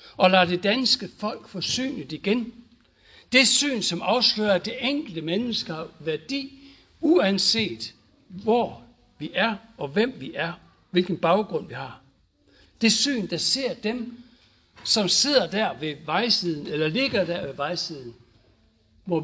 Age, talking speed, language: 60-79, 135 wpm, Danish